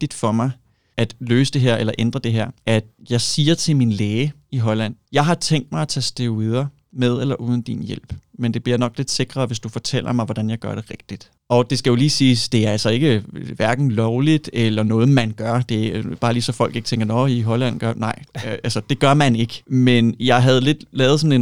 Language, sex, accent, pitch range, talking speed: Danish, male, native, 115-135 Hz, 240 wpm